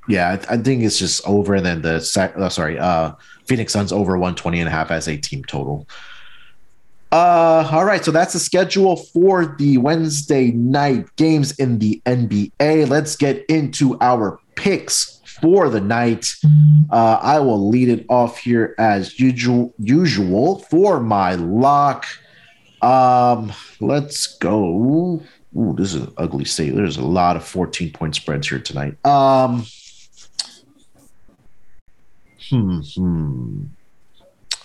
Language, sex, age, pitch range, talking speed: English, male, 30-49, 95-130 Hz, 135 wpm